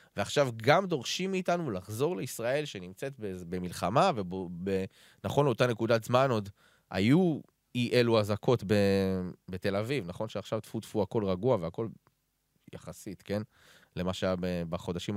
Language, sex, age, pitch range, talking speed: Hebrew, male, 20-39, 90-130 Hz, 140 wpm